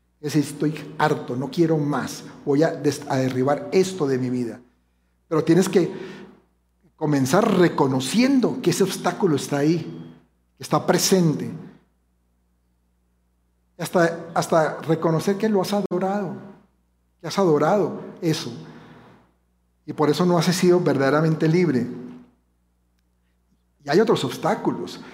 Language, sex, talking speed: Spanish, male, 120 wpm